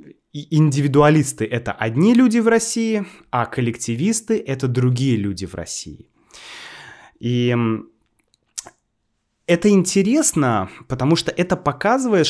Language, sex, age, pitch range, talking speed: Russian, male, 20-39, 120-170 Hz, 100 wpm